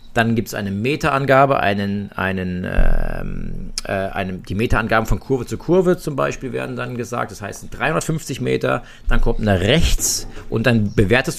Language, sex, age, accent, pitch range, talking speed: German, male, 40-59, German, 110-145 Hz, 170 wpm